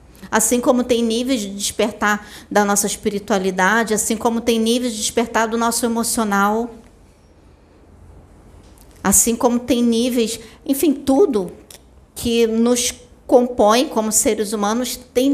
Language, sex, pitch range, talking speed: Portuguese, female, 205-245 Hz, 120 wpm